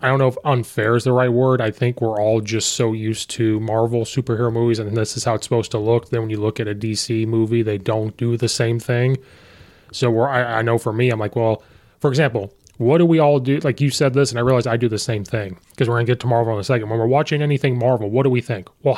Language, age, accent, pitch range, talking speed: English, 20-39, American, 110-130 Hz, 290 wpm